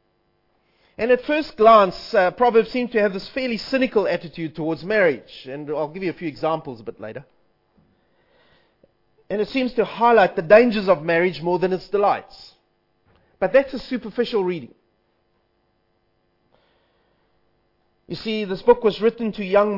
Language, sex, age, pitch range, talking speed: English, male, 30-49, 155-215 Hz, 155 wpm